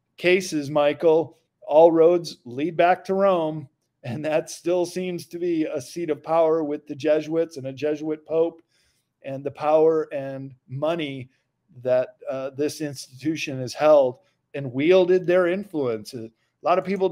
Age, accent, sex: 50-69, American, male